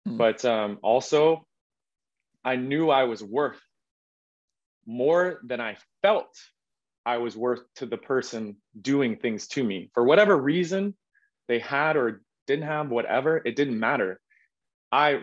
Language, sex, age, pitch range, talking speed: English, male, 20-39, 115-155 Hz, 140 wpm